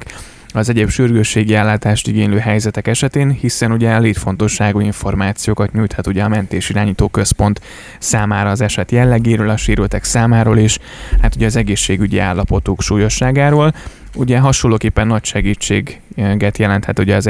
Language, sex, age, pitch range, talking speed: Hungarian, male, 20-39, 100-115 Hz, 130 wpm